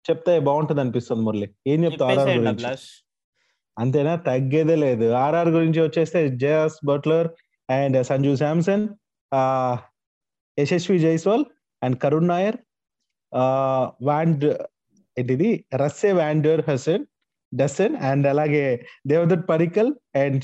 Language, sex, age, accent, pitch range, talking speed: Telugu, male, 30-49, native, 135-175 Hz, 100 wpm